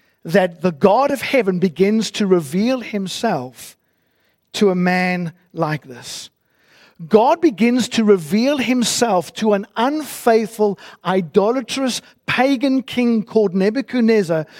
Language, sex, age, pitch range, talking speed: English, male, 50-69, 180-235 Hz, 110 wpm